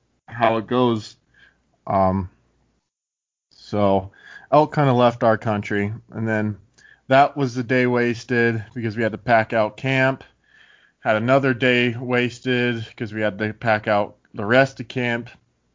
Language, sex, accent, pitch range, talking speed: English, male, American, 105-120 Hz, 150 wpm